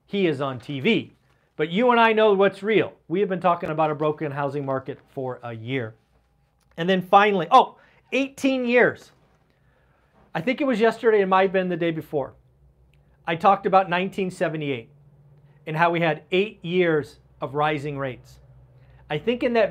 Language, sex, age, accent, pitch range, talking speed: English, male, 40-59, American, 145-195 Hz, 175 wpm